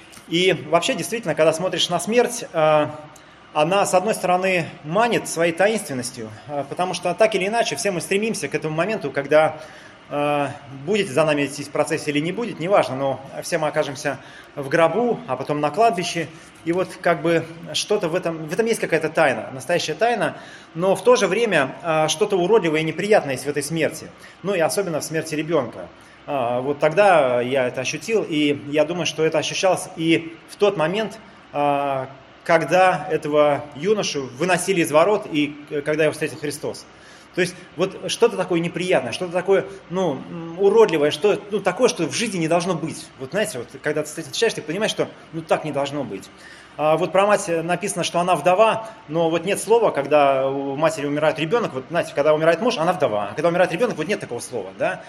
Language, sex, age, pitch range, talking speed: Russian, male, 30-49, 150-190 Hz, 185 wpm